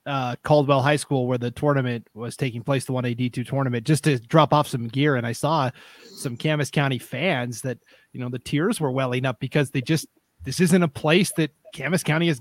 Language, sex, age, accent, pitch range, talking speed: English, male, 30-49, American, 125-160 Hz, 225 wpm